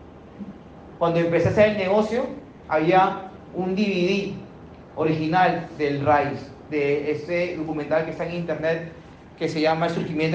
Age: 30-49